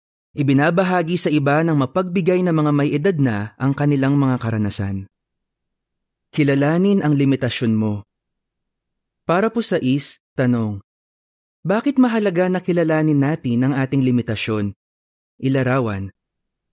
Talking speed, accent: 115 wpm, native